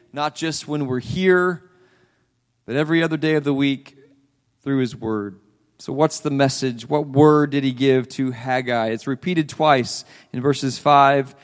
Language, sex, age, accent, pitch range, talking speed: English, male, 40-59, American, 120-155 Hz, 170 wpm